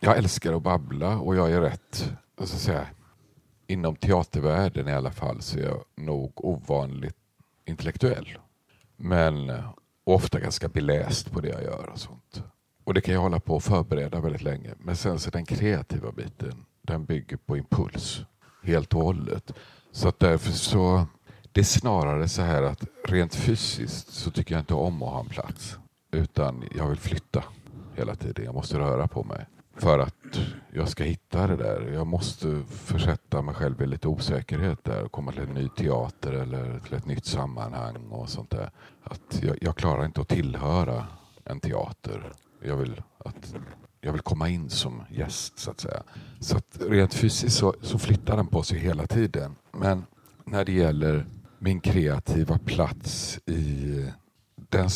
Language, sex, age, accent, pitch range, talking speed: Swedish, male, 50-69, native, 75-95 Hz, 175 wpm